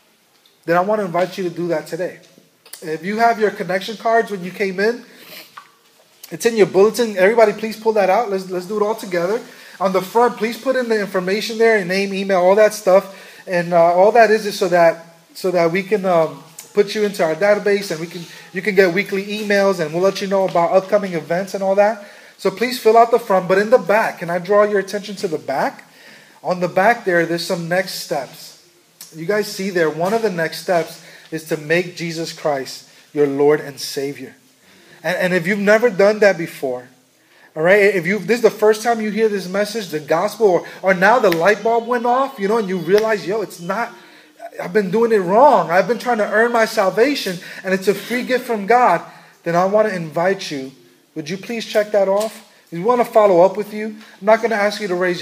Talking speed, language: 235 wpm, English